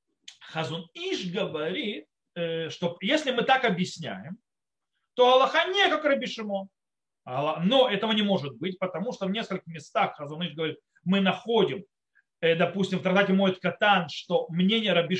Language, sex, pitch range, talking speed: Russian, male, 170-225 Hz, 145 wpm